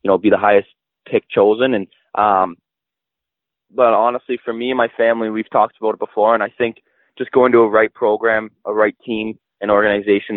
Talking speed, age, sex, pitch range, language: 205 wpm, 20-39, male, 95-115 Hz, English